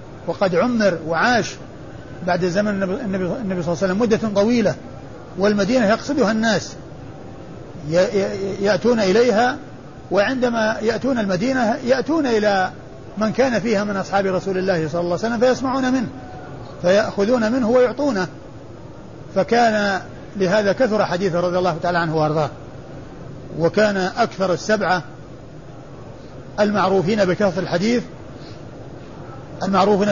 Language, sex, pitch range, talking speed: Arabic, male, 150-205 Hz, 110 wpm